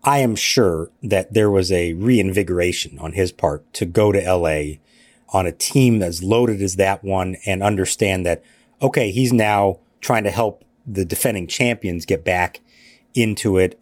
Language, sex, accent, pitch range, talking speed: English, male, American, 95-125 Hz, 170 wpm